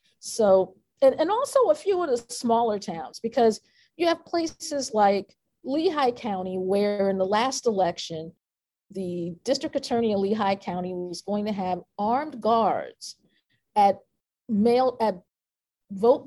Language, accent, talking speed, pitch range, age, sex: English, American, 140 wpm, 190-245 Hz, 40-59, female